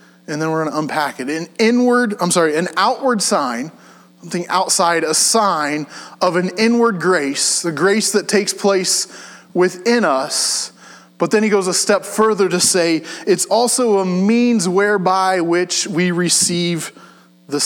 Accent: American